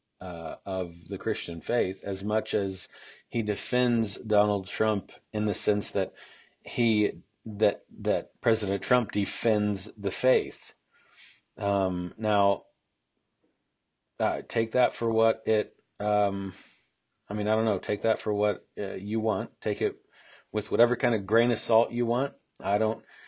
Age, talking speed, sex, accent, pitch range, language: 40-59, 150 wpm, male, American, 95-110 Hz, English